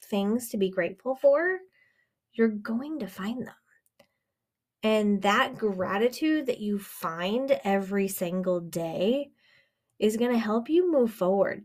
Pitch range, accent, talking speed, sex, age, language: 200-270 Hz, American, 135 wpm, female, 20-39, English